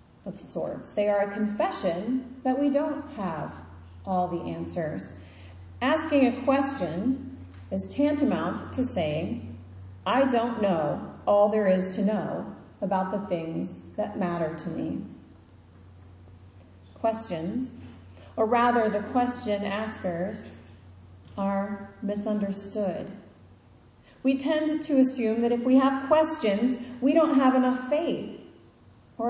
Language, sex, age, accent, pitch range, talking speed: English, female, 40-59, American, 195-260 Hz, 120 wpm